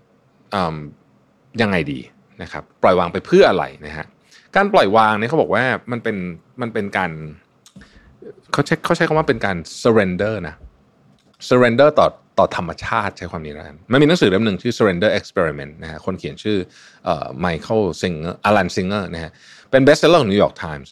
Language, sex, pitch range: Thai, male, 90-145 Hz